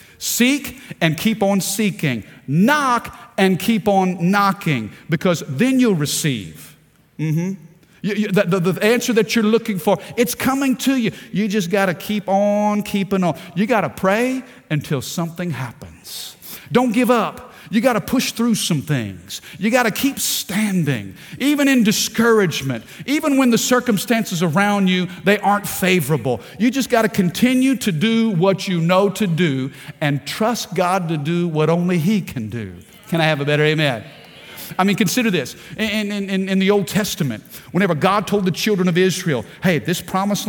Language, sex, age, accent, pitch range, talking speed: English, male, 50-69, American, 165-215 Hz, 175 wpm